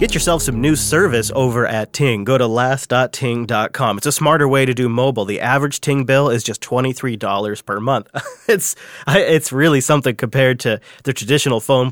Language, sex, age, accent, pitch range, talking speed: English, male, 30-49, American, 115-145 Hz, 180 wpm